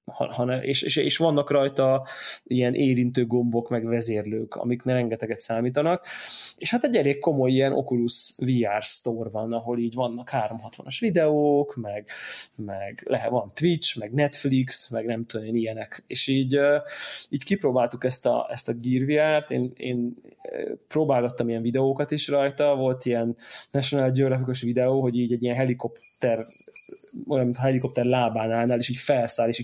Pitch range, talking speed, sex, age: 120-140 Hz, 160 wpm, male, 20-39